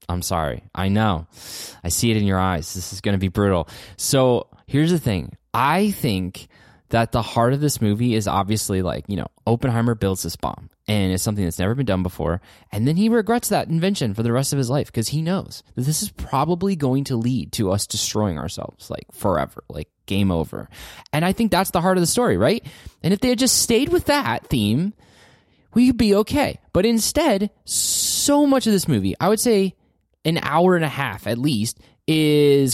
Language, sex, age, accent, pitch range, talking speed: English, male, 20-39, American, 100-165 Hz, 215 wpm